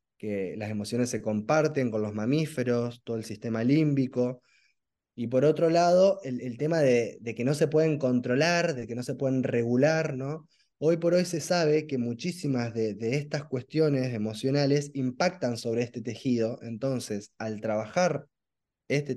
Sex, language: male, Spanish